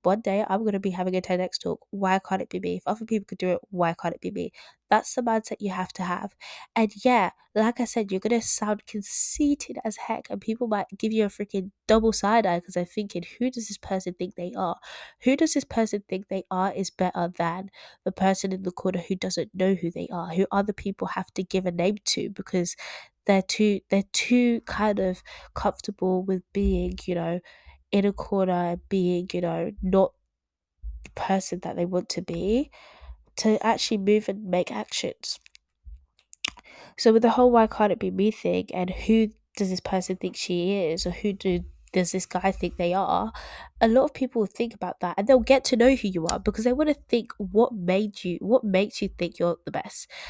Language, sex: English, female